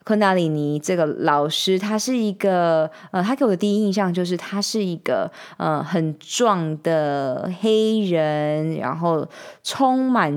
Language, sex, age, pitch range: Chinese, female, 20-39, 165-210 Hz